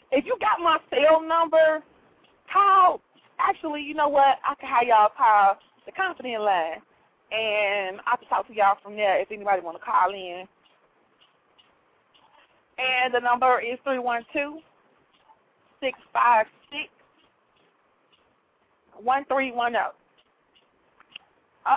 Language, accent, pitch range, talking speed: English, American, 220-290 Hz, 100 wpm